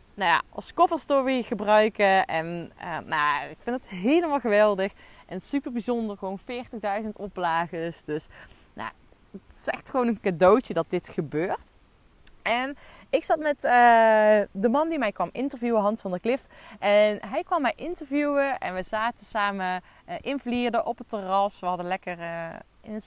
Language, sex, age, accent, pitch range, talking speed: Dutch, female, 20-39, Dutch, 185-240 Hz, 170 wpm